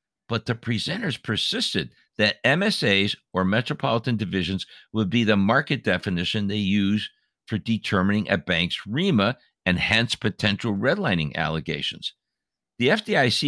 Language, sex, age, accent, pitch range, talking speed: English, male, 60-79, American, 95-115 Hz, 125 wpm